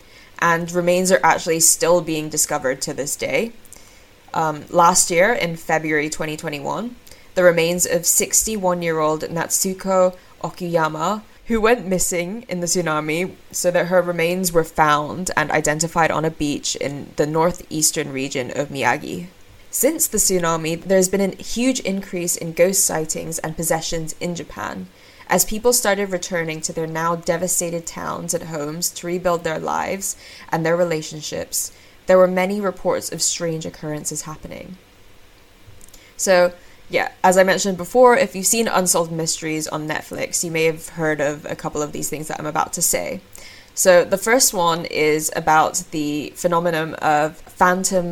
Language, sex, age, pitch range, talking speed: English, female, 20-39, 155-185 Hz, 160 wpm